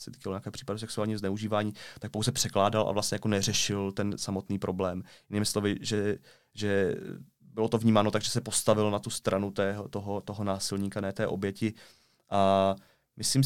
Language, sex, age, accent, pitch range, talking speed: Czech, male, 20-39, native, 100-115 Hz, 165 wpm